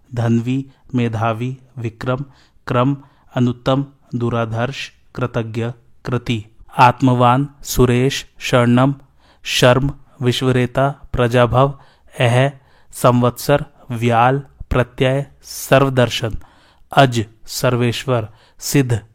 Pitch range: 115-135 Hz